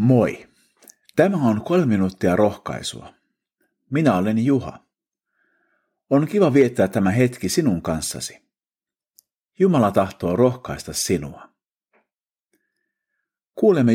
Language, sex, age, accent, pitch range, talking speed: Finnish, male, 50-69, native, 90-140 Hz, 90 wpm